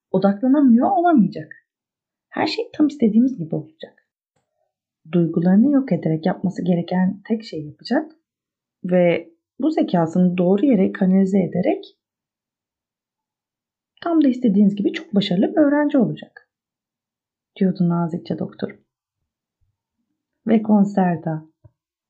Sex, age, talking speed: female, 30-49, 100 wpm